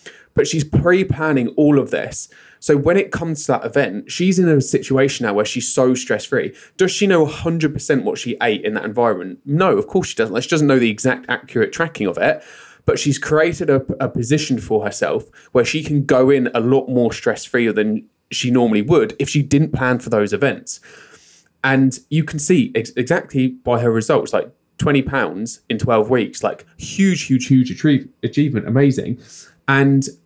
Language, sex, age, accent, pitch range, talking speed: English, male, 20-39, British, 125-155 Hz, 190 wpm